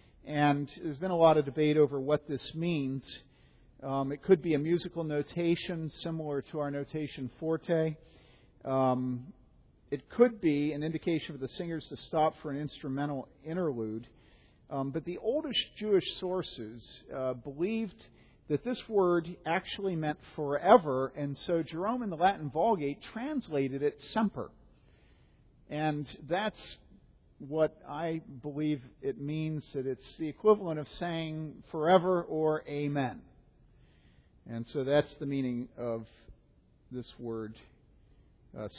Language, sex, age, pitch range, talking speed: English, male, 50-69, 140-180 Hz, 135 wpm